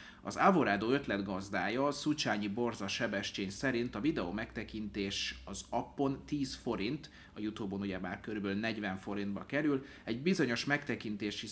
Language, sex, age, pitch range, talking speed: Hungarian, male, 30-49, 95-120 Hz, 130 wpm